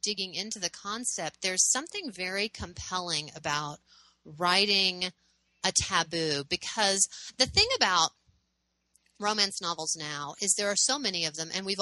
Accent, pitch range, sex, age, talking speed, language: American, 155-210 Hz, female, 30-49, 140 wpm, English